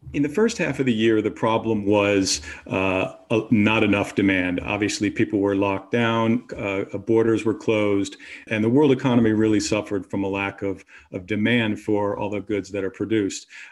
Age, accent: 40-59, American